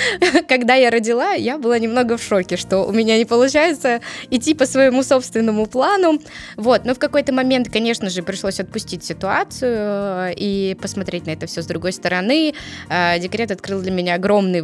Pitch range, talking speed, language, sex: 180-235 Hz, 170 wpm, Russian, female